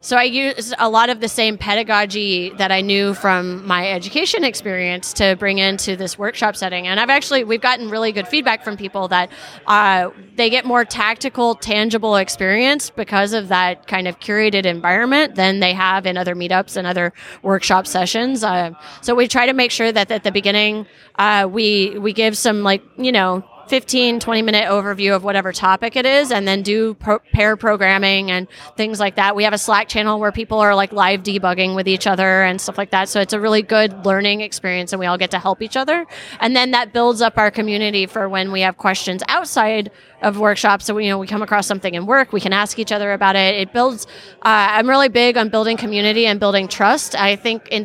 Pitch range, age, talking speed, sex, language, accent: 190-225 Hz, 30-49, 215 wpm, female, English, American